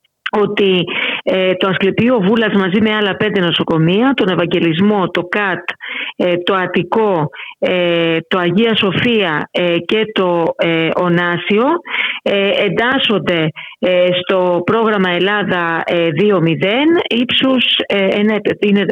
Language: Greek